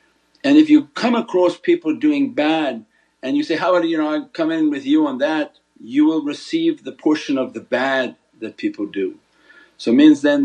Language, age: English, 50-69